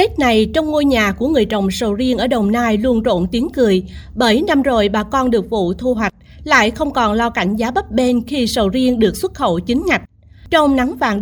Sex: female